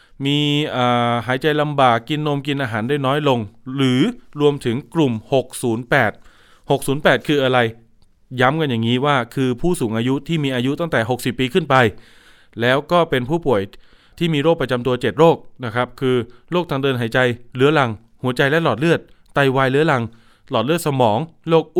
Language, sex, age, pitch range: Thai, male, 20-39, 120-150 Hz